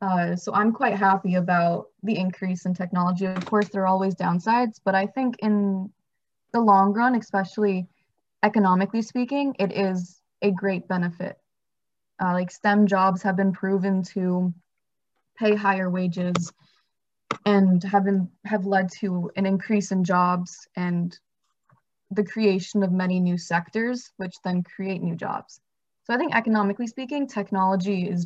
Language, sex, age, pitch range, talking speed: English, female, 20-39, 180-210 Hz, 150 wpm